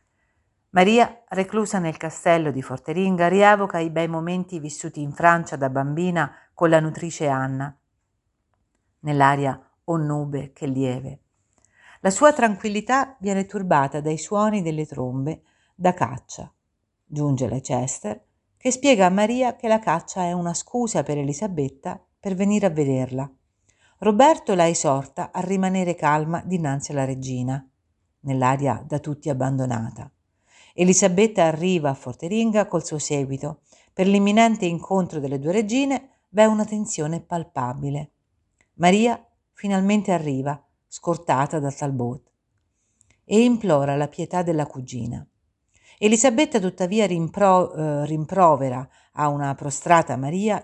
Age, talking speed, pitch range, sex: 50-69, 125 wpm, 135-190 Hz, female